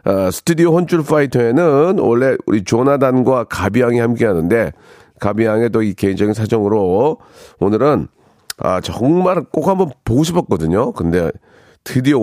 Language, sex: Korean, male